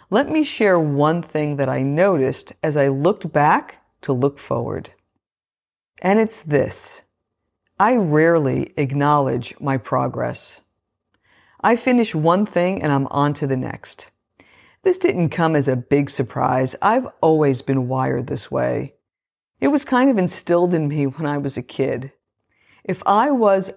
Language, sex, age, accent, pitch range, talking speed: English, female, 50-69, American, 140-185 Hz, 155 wpm